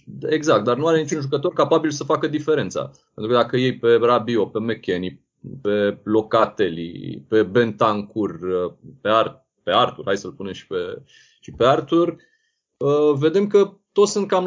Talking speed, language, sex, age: 165 wpm, Romanian, male, 30-49